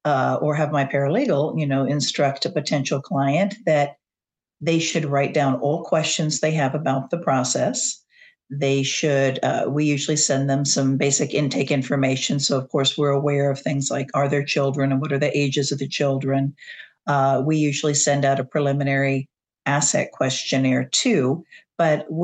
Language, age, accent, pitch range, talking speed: English, 50-69, American, 140-155 Hz, 175 wpm